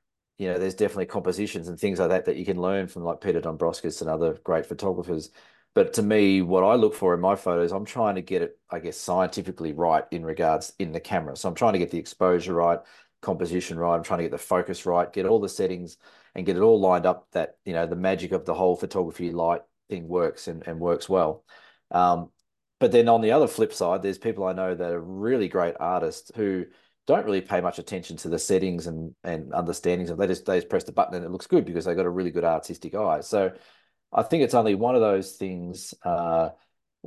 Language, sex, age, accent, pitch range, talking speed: English, male, 30-49, Australian, 85-95 Hz, 240 wpm